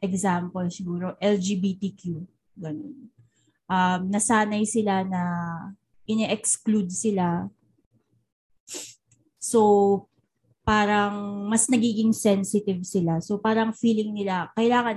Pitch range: 175-210 Hz